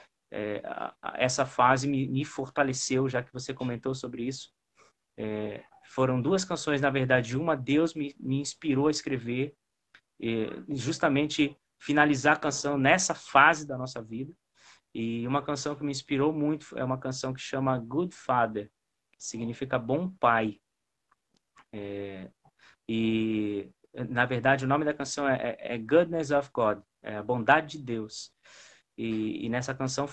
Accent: Brazilian